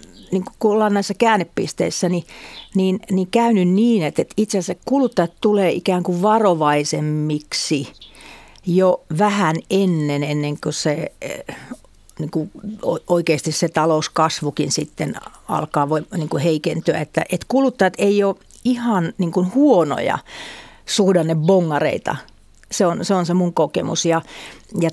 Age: 40-59